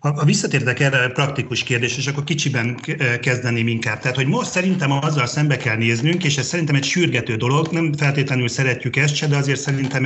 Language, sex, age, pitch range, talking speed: Hungarian, male, 40-59, 125-150 Hz, 190 wpm